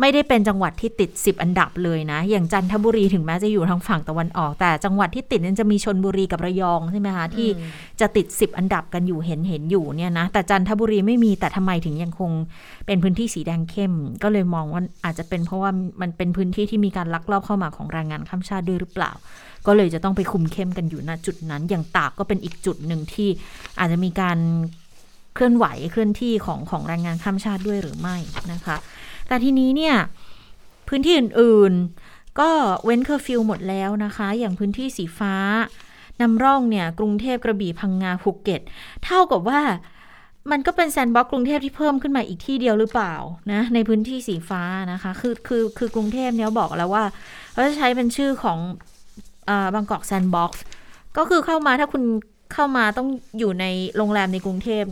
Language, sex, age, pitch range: Thai, female, 30-49, 175-225 Hz